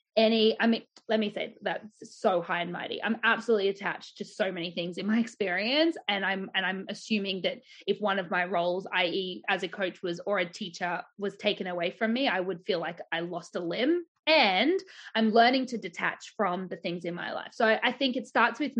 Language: English